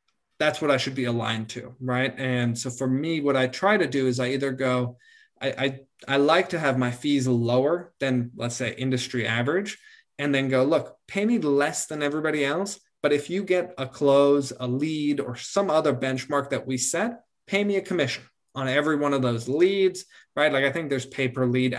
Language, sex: English, male